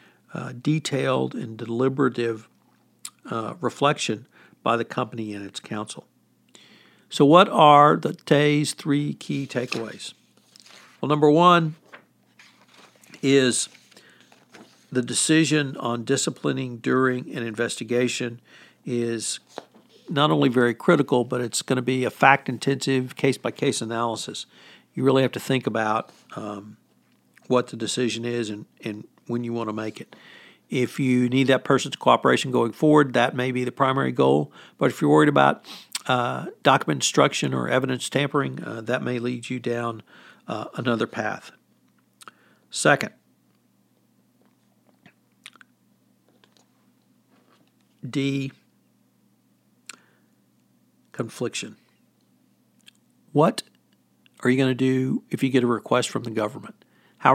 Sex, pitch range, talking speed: male, 115-135 Hz, 125 wpm